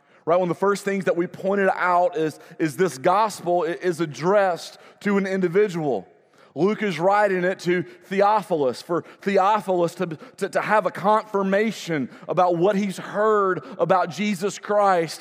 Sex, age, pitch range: male, 30-49, 180-205 Hz